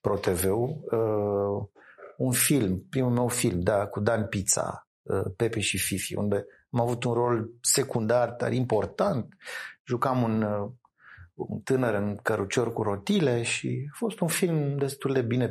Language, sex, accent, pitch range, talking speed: Romanian, male, native, 115-160 Hz, 160 wpm